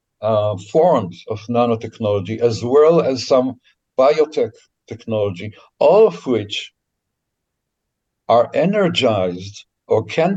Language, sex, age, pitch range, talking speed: English, male, 60-79, 110-160 Hz, 100 wpm